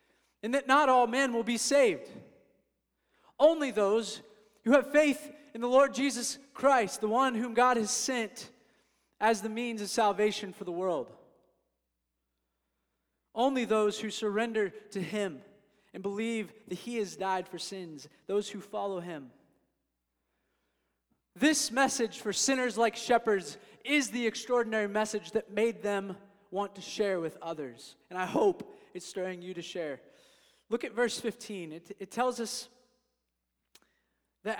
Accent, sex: American, male